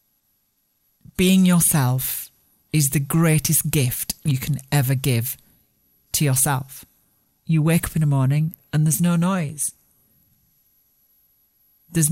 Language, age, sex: English, 40-59, male